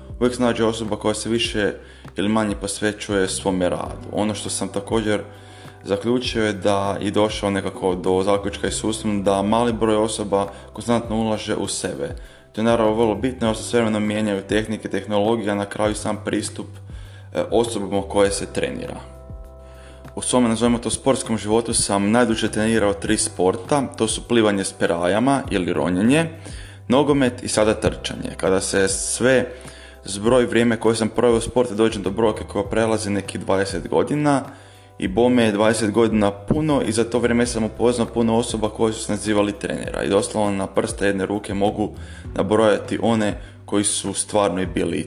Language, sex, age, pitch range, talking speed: Croatian, male, 20-39, 100-115 Hz, 165 wpm